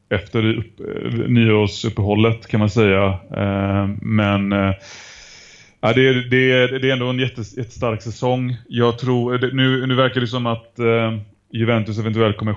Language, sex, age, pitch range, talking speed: Swedish, male, 30-49, 105-120 Hz, 135 wpm